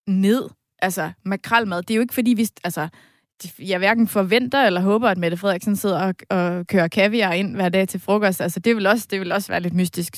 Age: 20-39